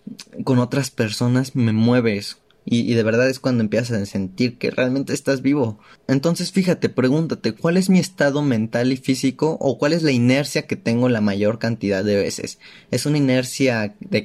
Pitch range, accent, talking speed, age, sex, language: 115-155 Hz, Mexican, 185 wpm, 20-39, male, Spanish